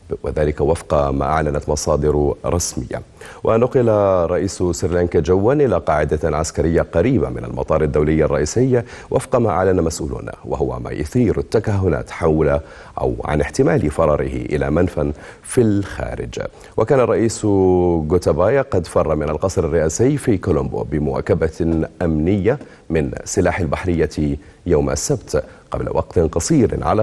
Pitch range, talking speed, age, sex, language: 75-100 Hz, 125 wpm, 40-59, male, Arabic